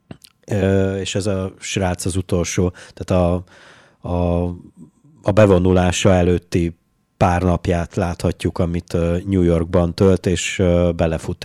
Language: Hungarian